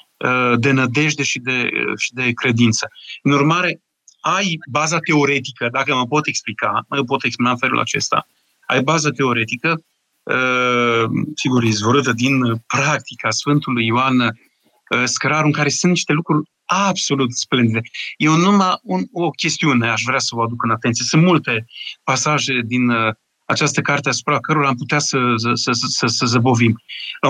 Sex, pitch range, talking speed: male, 125-160 Hz, 155 wpm